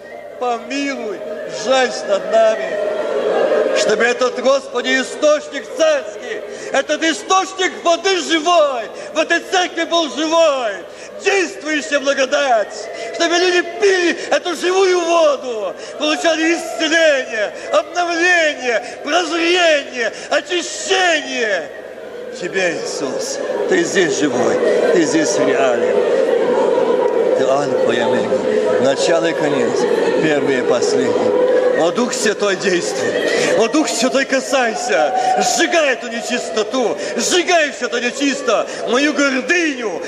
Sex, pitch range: male, 280-435 Hz